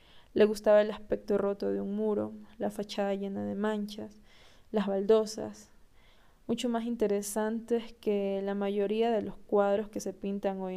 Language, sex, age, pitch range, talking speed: Spanish, female, 10-29, 190-215 Hz, 155 wpm